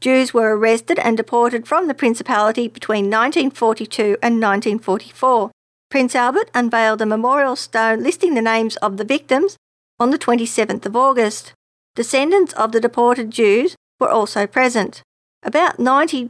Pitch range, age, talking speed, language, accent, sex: 215-255 Hz, 50-69, 145 wpm, English, Australian, female